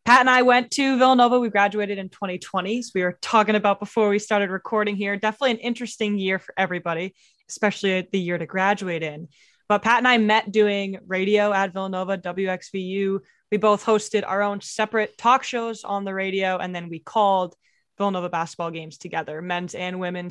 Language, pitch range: English, 180-215 Hz